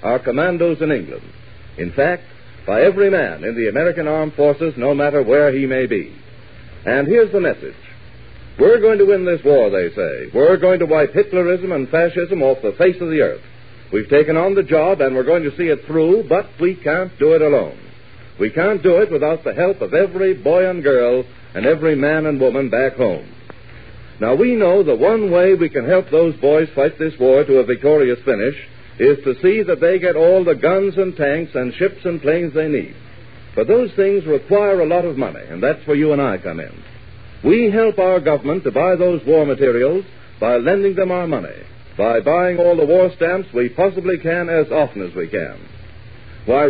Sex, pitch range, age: male, 145-195 Hz, 60-79